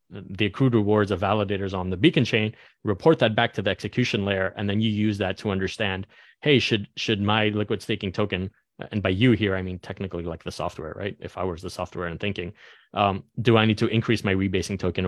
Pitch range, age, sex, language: 95-115 Hz, 30-49, male, Chinese